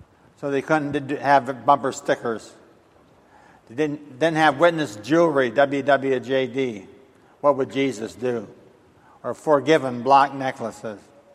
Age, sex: 60-79, male